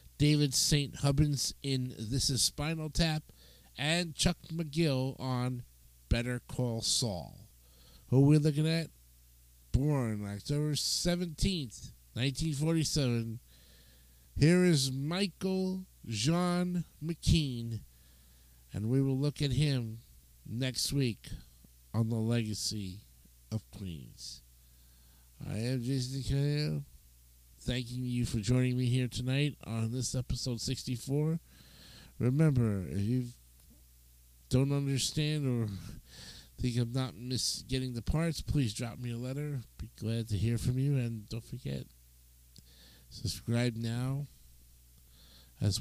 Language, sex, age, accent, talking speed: English, male, 50-69, American, 115 wpm